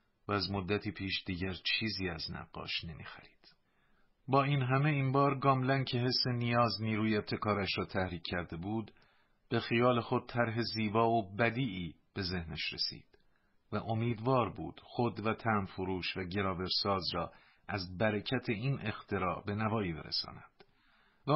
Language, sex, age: Persian, male, 50-69